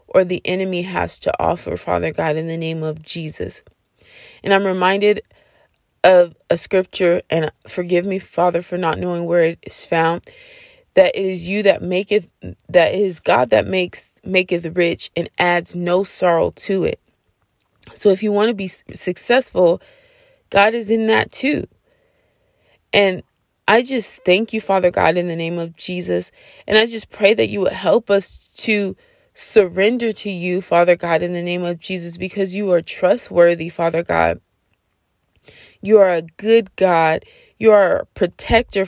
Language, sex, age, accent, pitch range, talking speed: English, female, 20-39, American, 170-210 Hz, 165 wpm